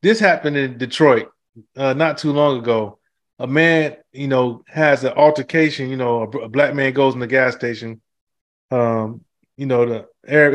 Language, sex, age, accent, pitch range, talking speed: English, male, 20-39, American, 120-155 Hz, 180 wpm